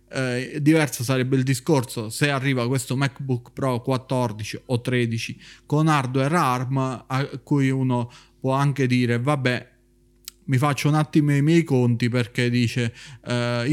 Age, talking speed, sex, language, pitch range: 30-49, 145 wpm, male, Italian, 120-145 Hz